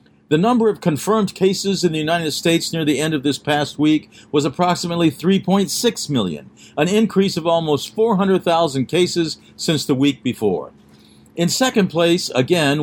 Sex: male